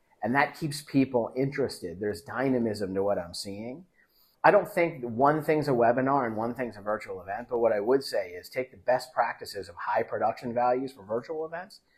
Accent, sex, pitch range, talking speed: American, male, 105-145 Hz, 205 wpm